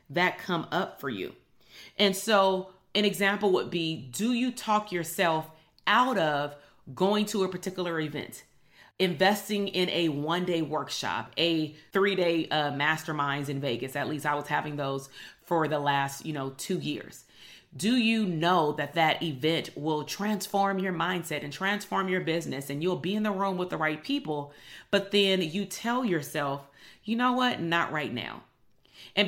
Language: English